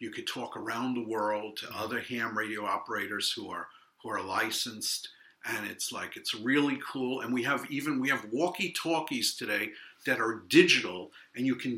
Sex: male